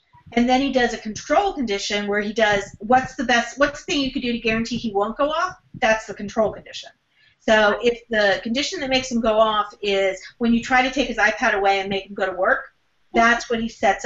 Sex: female